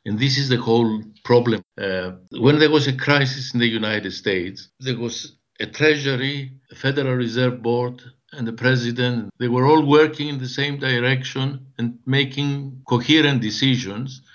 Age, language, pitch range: 60-79, English, 115-140 Hz